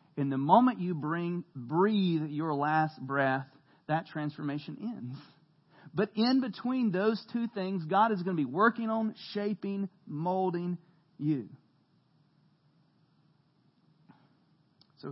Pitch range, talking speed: 145-180 Hz, 115 wpm